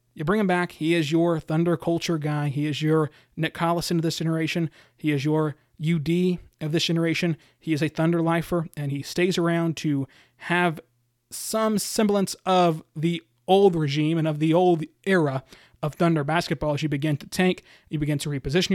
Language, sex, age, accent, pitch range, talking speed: English, male, 30-49, American, 155-180 Hz, 190 wpm